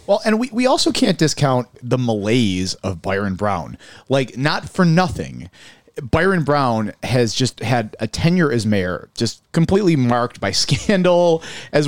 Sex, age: male, 30-49